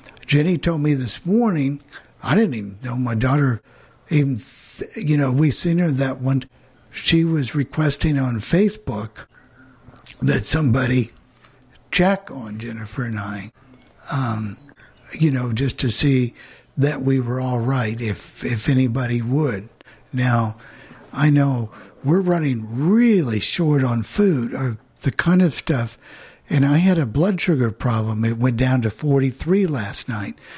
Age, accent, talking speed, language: 60-79, American, 145 wpm, English